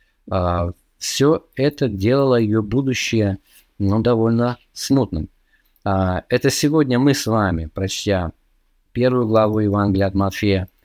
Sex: male